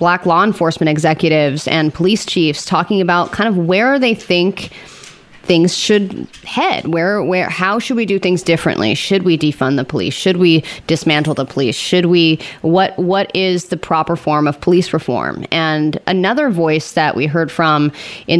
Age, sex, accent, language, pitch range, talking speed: 30-49, female, American, English, 160-190 Hz, 175 wpm